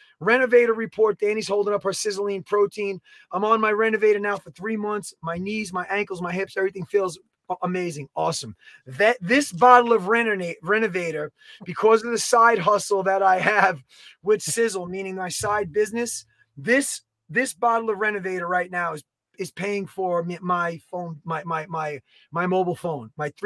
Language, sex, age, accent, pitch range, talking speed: English, male, 30-49, American, 185-230 Hz, 165 wpm